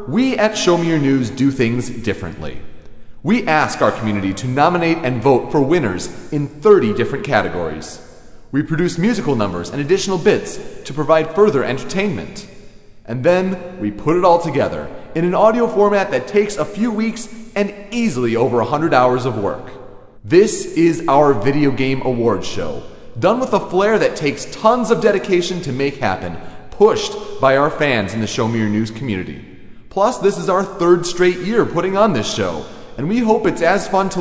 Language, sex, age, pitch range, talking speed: English, male, 30-49, 125-200 Hz, 185 wpm